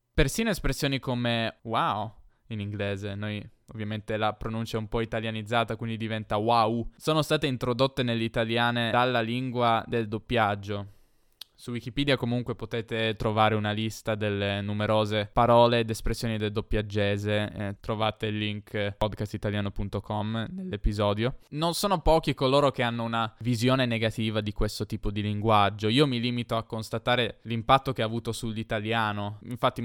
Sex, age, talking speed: male, 10-29, 140 wpm